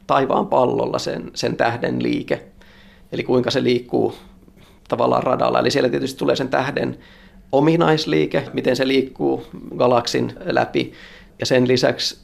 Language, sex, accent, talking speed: Finnish, male, native, 130 wpm